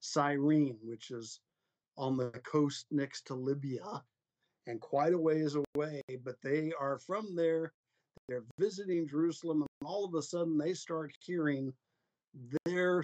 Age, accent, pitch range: 50-69, American, 130-155 Hz